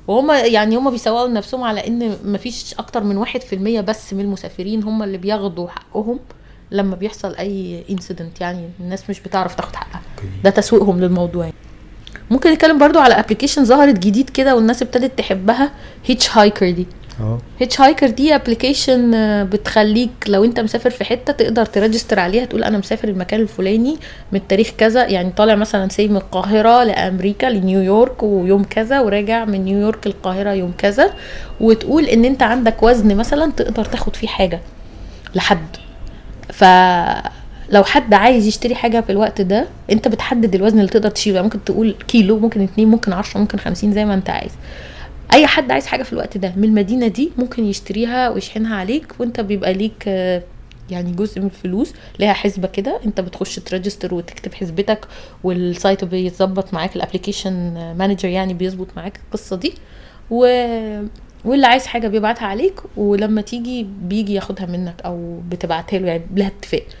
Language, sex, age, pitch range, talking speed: Arabic, female, 20-39, 190-230 Hz, 155 wpm